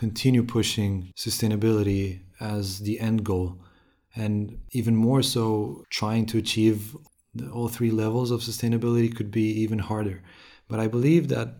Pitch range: 105-120 Hz